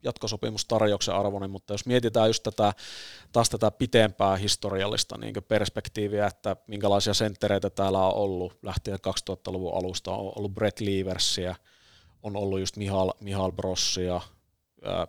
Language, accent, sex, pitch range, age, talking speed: Finnish, native, male, 95-105 Hz, 30-49, 120 wpm